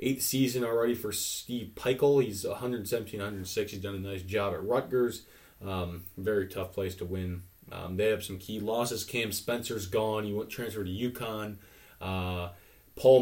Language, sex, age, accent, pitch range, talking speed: English, male, 20-39, American, 95-115 Hz, 165 wpm